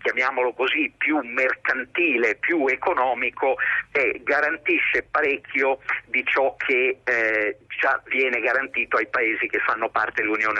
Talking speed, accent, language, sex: 125 wpm, native, Italian, male